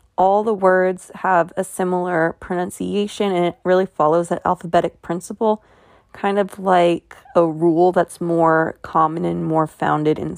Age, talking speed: 20-39, 150 wpm